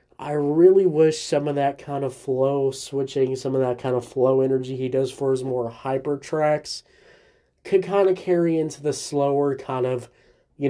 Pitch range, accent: 130-165 Hz, American